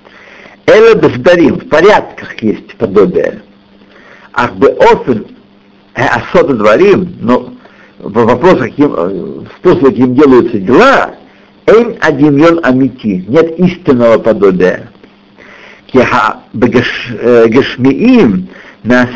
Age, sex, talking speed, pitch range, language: 60-79, male, 70 wpm, 120-180 Hz, Russian